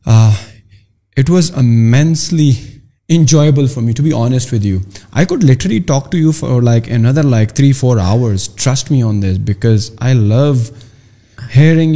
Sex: male